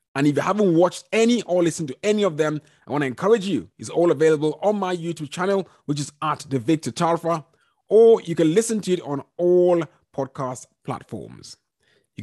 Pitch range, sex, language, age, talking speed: 150-205 Hz, male, English, 30-49, 195 wpm